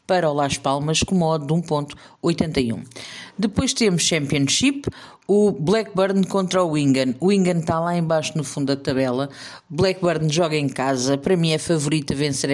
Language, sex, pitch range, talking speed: Portuguese, female, 145-190 Hz, 165 wpm